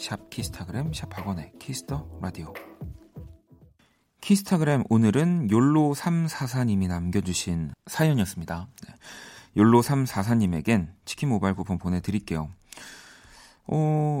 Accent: native